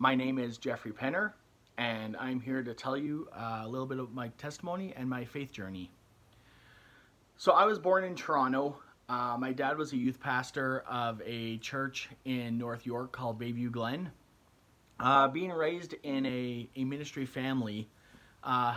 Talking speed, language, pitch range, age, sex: 170 wpm, English, 120-145 Hz, 30-49, male